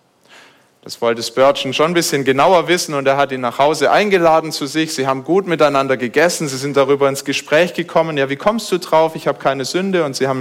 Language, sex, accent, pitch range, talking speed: German, male, German, 135-190 Hz, 230 wpm